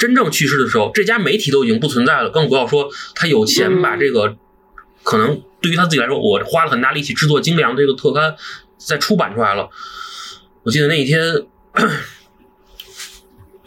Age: 20-39